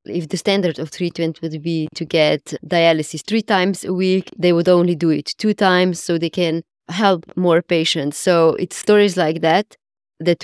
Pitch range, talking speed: 155-180 Hz, 190 wpm